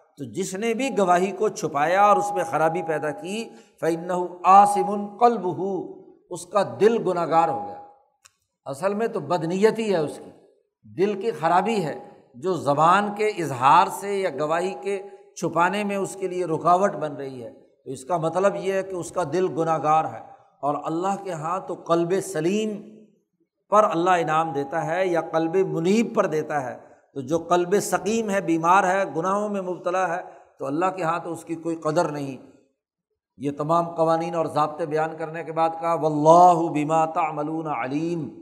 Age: 60-79